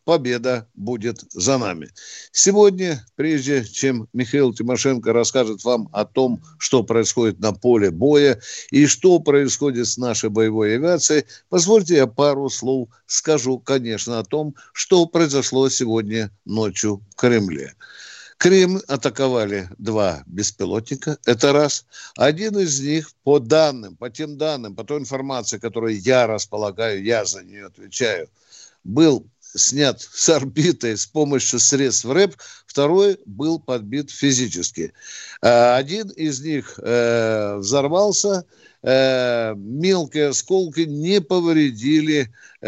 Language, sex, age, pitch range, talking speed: Russian, male, 60-79, 115-155 Hz, 115 wpm